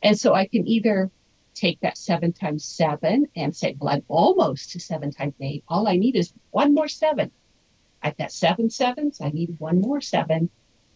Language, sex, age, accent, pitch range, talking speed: English, female, 50-69, American, 170-250 Hz, 190 wpm